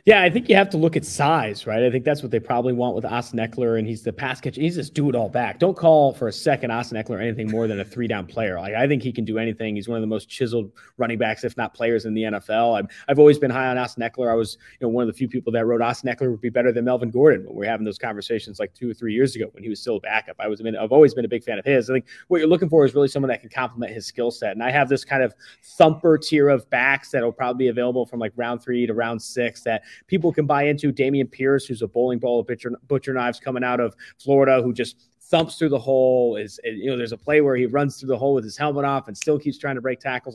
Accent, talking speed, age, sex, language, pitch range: American, 310 wpm, 30-49, male, English, 115-140 Hz